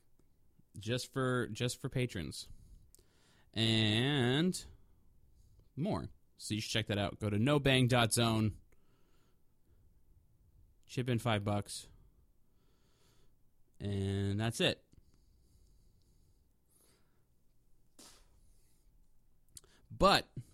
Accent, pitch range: American, 100-130 Hz